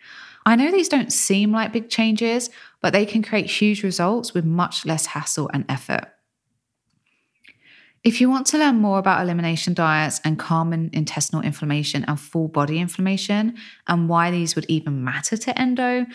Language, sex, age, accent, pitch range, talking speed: English, female, 20-39, British, 155-215 Hz, 165 wpm